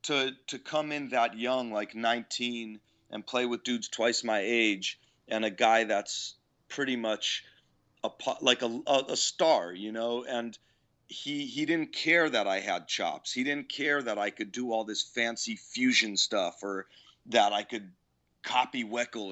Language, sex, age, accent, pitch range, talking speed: English, male, 40-59, American, 110-140 Hz, 170 wpm